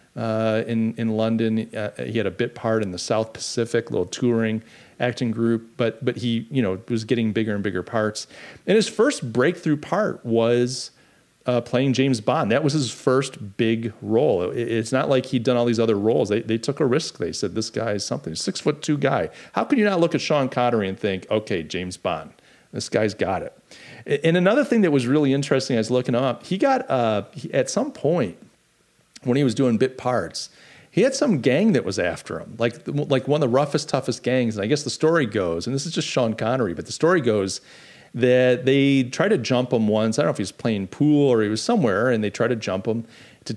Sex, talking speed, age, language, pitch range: male, 235 wpm, 40-59, English, 110-135 Hz